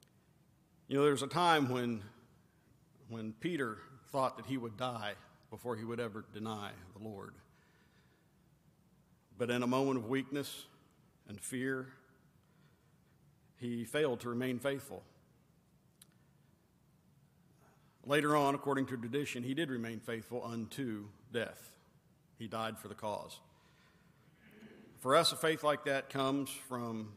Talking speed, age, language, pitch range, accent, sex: 125 wpm, 50-69, English, 115-150 Hz, American, male